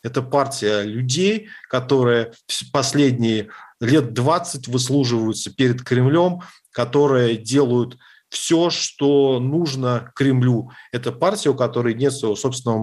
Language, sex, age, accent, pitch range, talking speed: Russian, male, 40-59, native, 110-140 Hz, 110 wpm